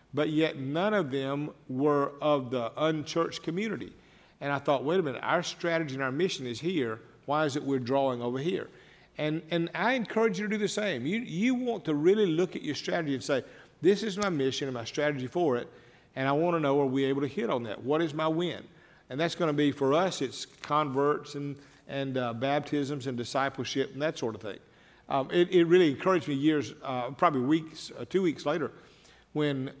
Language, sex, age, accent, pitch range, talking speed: English, male, 50-69, American, 135-175 Hz, 220 wpm